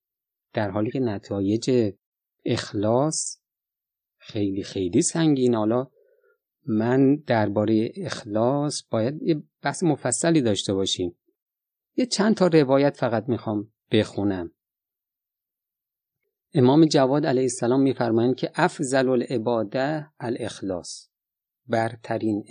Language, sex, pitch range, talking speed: Persian, male, 115-155 Hz, 95 wpm